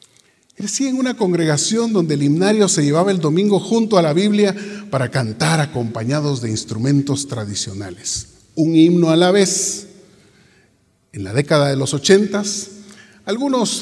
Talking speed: 145 wpm